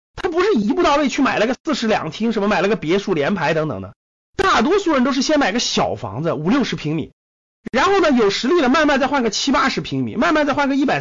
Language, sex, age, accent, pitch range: Chinese, male, 30-49, native, 185-280 Hz